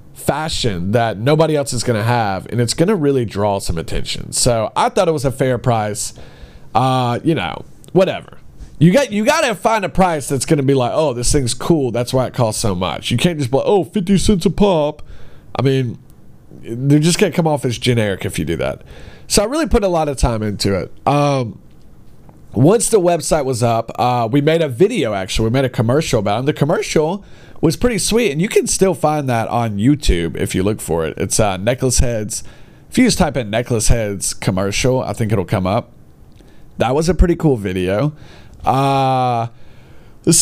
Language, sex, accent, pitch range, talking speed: English, male, American, 115-160 Hz, 210 wpm